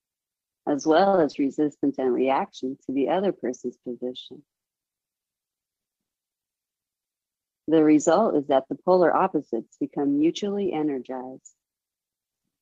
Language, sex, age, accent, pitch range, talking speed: English, female, 40-59, American, 135-185 Hz, 100 wpm